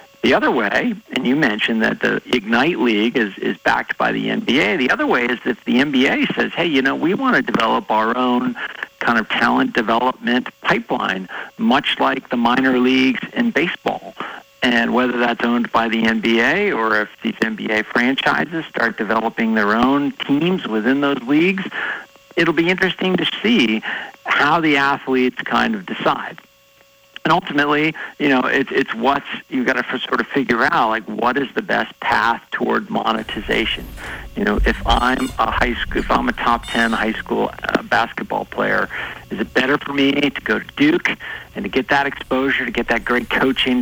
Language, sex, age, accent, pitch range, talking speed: English, male, 50-69, American, 115-140 Hz, 185 wpm